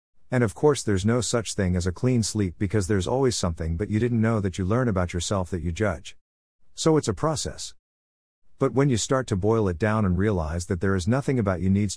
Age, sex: 50-69, male